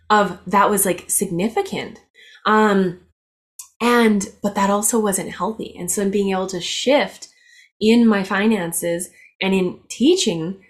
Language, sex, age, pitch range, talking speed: English, female, 20-39, 185-235 Hz, 135 wpm